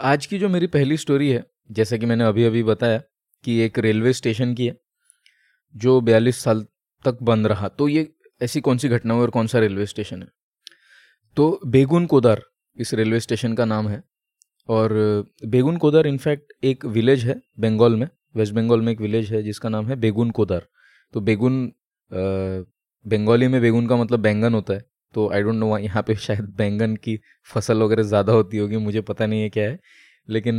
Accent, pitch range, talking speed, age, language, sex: native, 110-135 Hz, 190 wpm, 20-39, Hindi, male